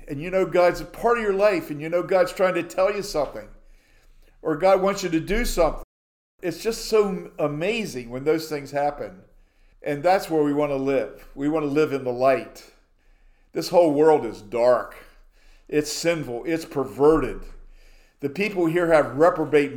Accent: American